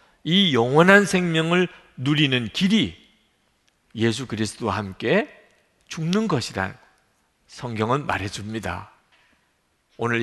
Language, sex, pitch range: Korean, male, 115-185 Hz